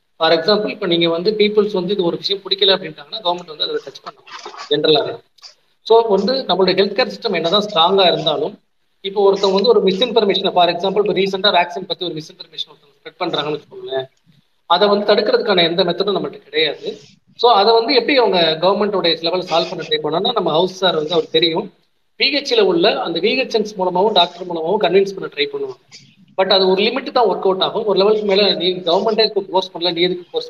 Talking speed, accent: 190 wpm, native